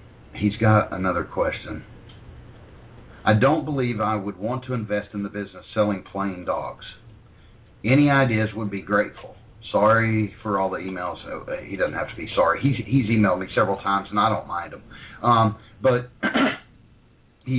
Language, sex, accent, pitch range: English, male, American, 105-130 Hz